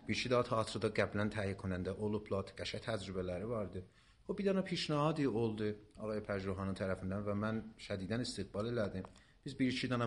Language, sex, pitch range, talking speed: Persian, male, 95-115 Hz, 160 wpm